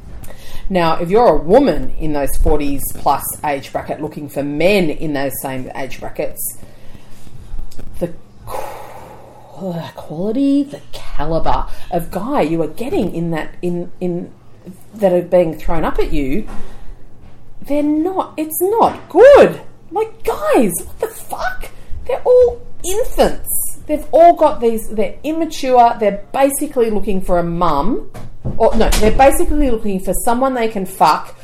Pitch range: 160-255 Hz